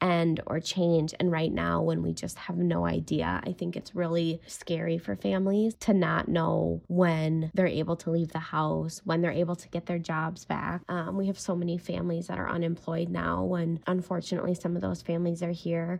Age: 20-39